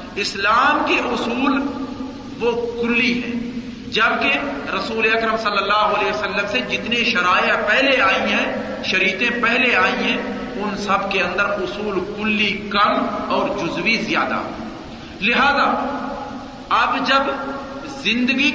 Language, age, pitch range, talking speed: Urdu, 50-69, 220-265 Hz, 120 wpm